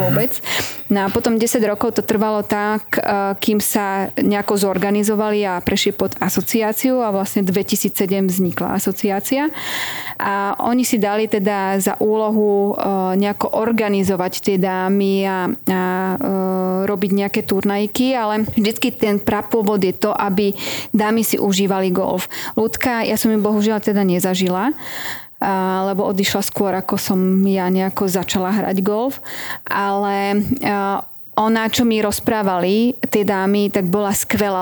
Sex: female